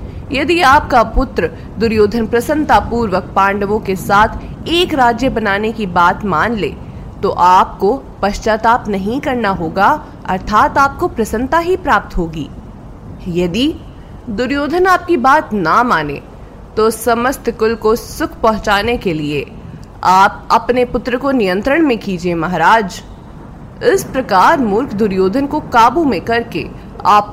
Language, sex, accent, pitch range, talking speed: Hindi, female, native, 190-260 Hz, 130 wpm